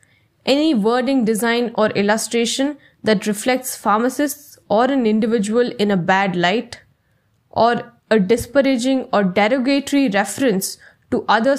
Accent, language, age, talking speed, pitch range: Indian, English, 10-29, 120 wpm, 210-260 Hz